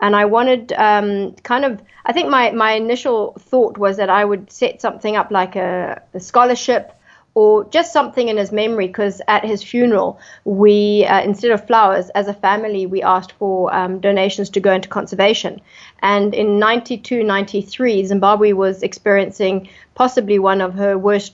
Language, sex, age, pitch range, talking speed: English, female, 30-49, 195-220 Hz, 175 wpm